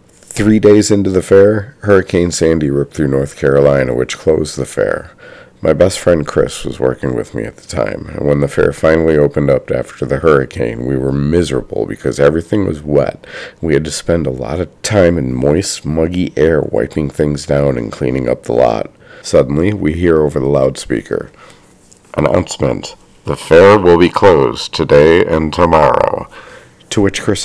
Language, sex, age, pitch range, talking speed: English, male, 50-69, 75-95 Hz, 175 wpm